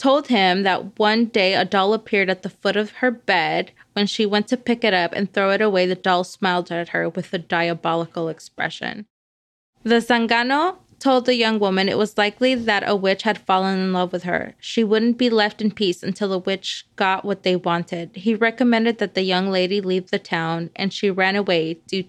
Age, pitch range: 20-39, 190-230 Hz